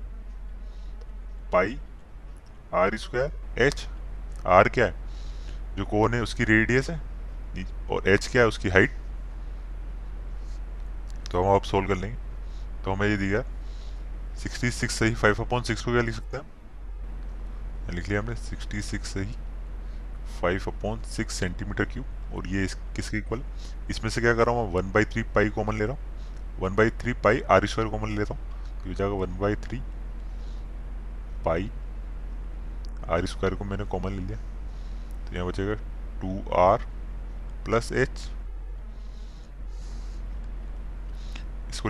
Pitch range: 95-110 Hz